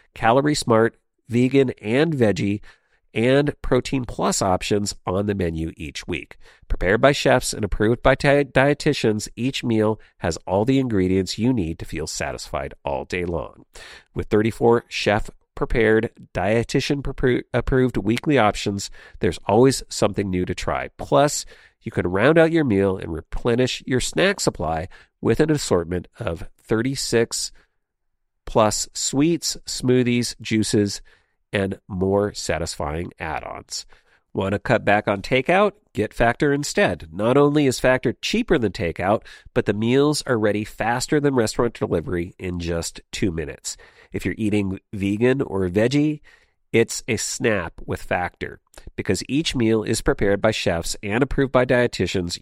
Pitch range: 100-130 Hz